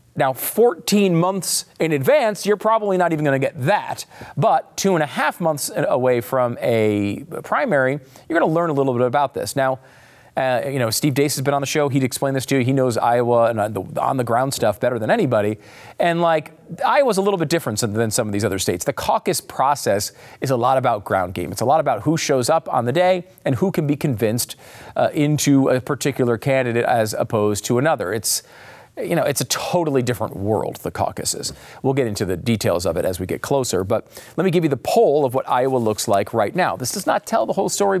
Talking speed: 235 wpm